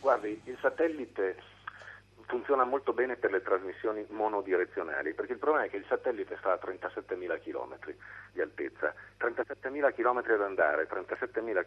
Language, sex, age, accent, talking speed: Italian, male, 50-69, native, 145 wpm